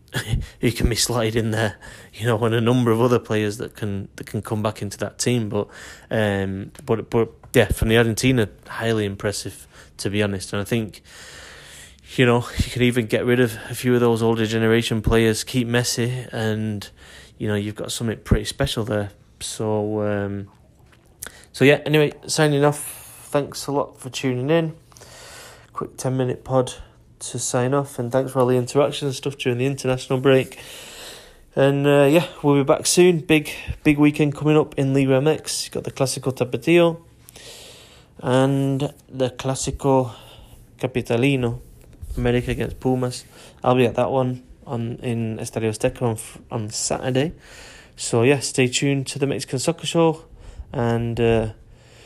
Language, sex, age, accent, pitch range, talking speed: English, male, 20-39, British, 110-135 Hz, 170 wpm